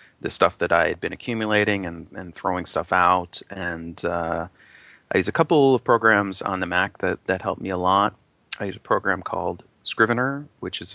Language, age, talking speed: English, 30-49, 205 wpm